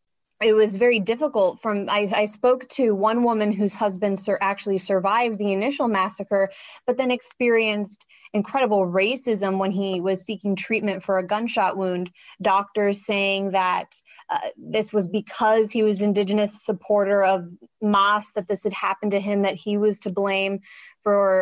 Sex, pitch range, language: female, 195-220 Hz, English